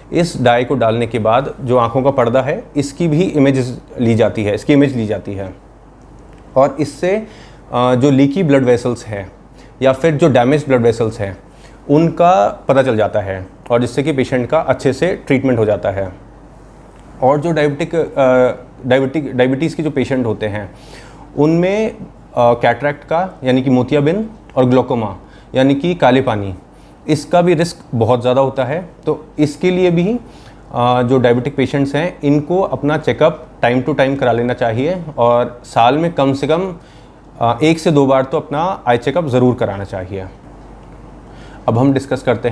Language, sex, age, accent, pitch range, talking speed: Hindi, male, 30-49, native, 120-150 Hz, 170 wpm